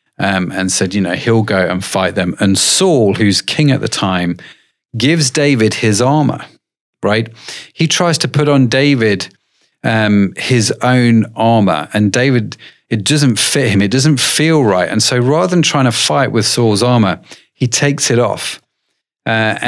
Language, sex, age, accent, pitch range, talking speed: English, male, 40-59, British, 105-140 Hz, 175 wpm